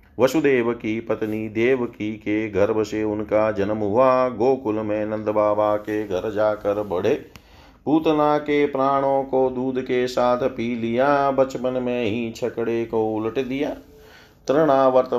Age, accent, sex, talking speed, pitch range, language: 40-59, native, male, 140 wpm, 105-120 Hz, Hindi